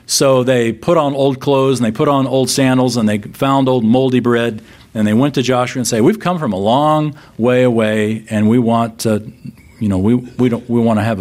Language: English